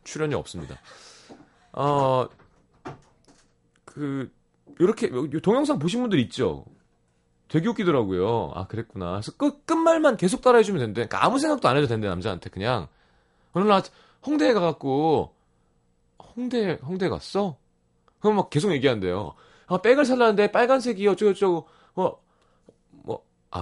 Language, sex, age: Korean, male, 30-49